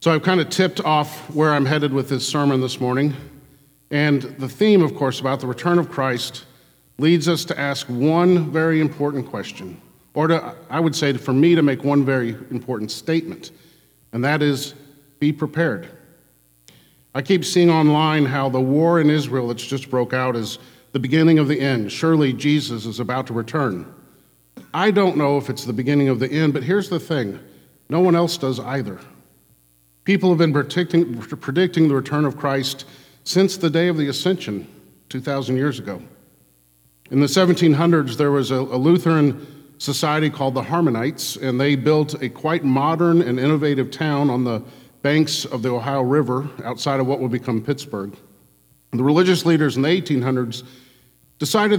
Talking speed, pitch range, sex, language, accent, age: 180 wpm, 130-160 Hz, male, English, American, 50-69